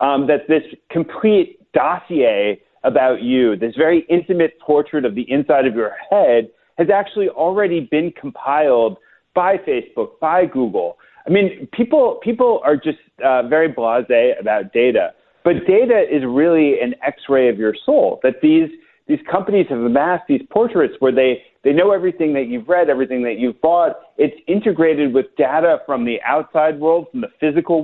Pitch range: 125-180 Hz